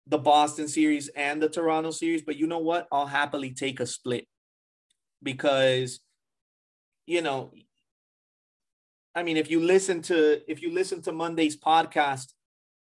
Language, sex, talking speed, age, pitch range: English, male, 145 wpm, 30-49, 135-155 Hz